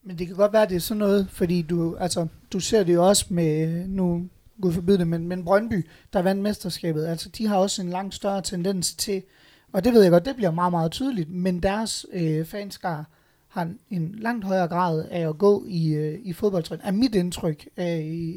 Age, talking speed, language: 30-49, 230 wpm, Danish